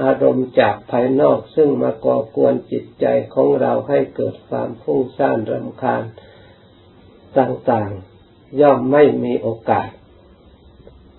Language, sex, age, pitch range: Thai, male, 60-79, 100-130 Hz